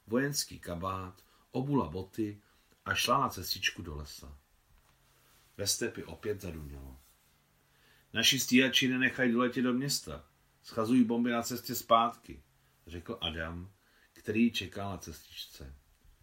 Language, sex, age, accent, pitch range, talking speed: Czech, male, 40-59, native, 85-120 Hz, 115 wpm